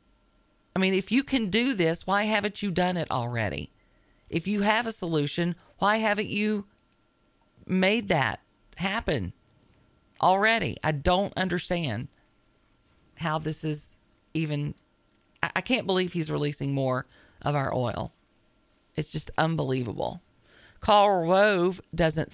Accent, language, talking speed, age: American, English, 125 wpm, 40-59